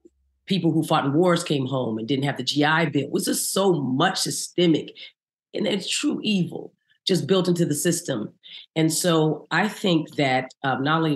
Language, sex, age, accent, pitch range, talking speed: English, female, 40-59, American, 140-175 Hz, 195 wpm